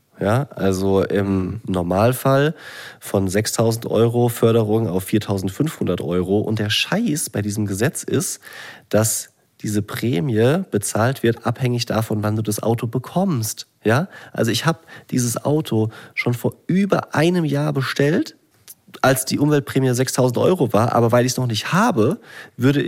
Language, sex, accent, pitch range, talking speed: German, male, German, 100-120 Hz, 145 wpm